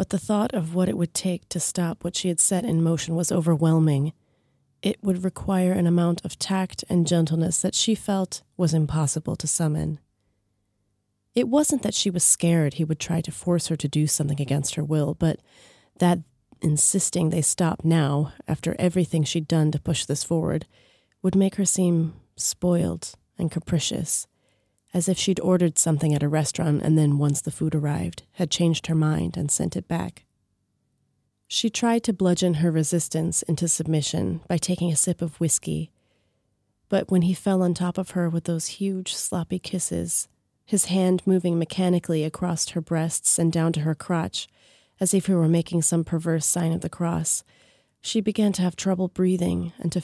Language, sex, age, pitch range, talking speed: Czech, female, 30-49, 150-180 Hz, 185 wpm